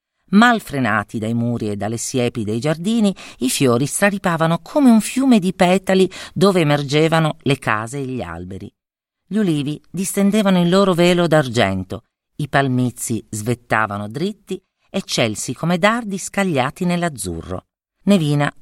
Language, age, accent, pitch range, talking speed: Italian, 40-59, native, 115-185 Hz, 135 wpm